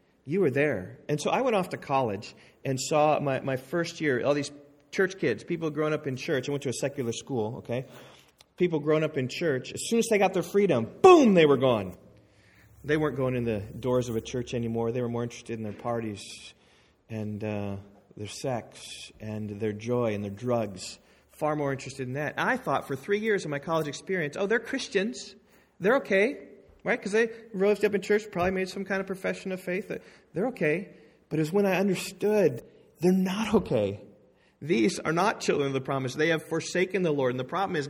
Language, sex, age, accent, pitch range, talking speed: English, male, 30-49, American, 115-175 Hz, 215 wpm